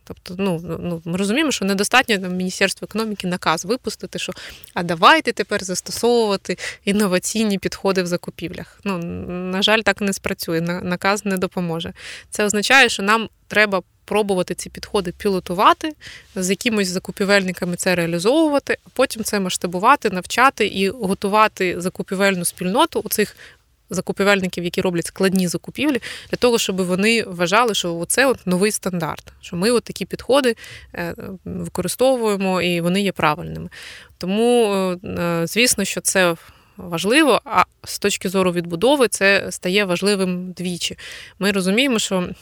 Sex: female